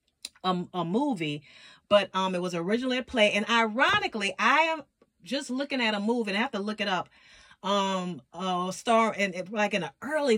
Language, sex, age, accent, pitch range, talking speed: English, female, 30-49, American, 190-235 Hz, 195 wpm